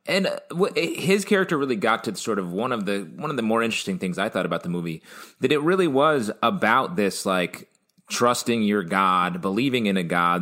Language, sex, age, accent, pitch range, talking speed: English, male, 30-49, American, 90-115 Hz, 205 wpm